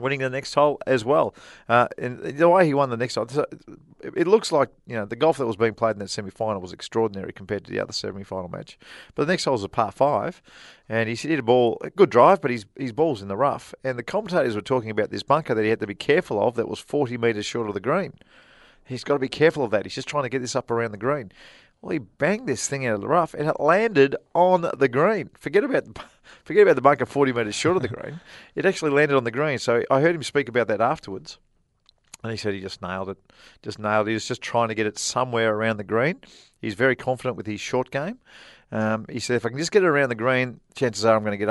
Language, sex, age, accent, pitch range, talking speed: English, male, 40-59, Australian, 110-140 Hz, 275 wpm